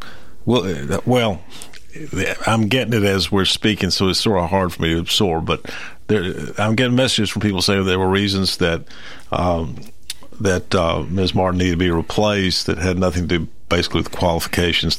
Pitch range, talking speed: 90-115 Hz, 175 wpm